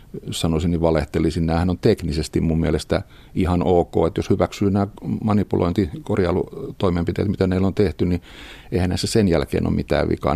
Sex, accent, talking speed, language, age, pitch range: male, native, 160 wpm, Finnish, 50-69, 80-90 Hz